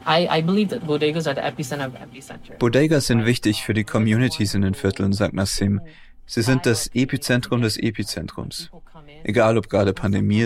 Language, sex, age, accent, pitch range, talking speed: German, male, 30-49, German, 100-125 Hz, 165 wpm